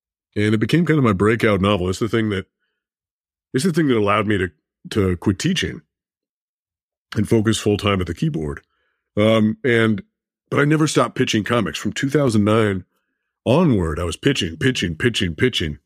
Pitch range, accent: 100-120 Hz, American